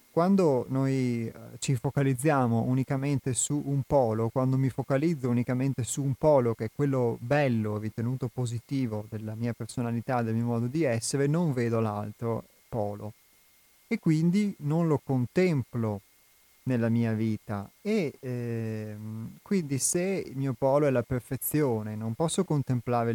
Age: 30-49